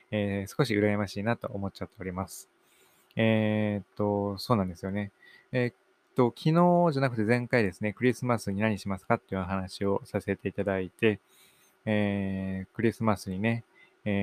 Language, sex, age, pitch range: Japanese, male, 20-39, 100-125 Hz